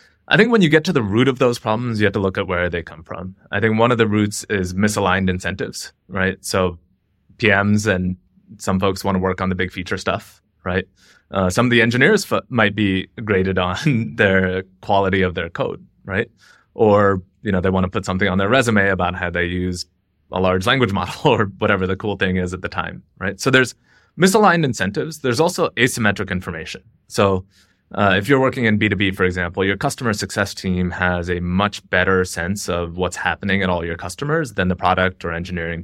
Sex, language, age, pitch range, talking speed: male, English, 20-39, 95-115 Hz, 215 wpm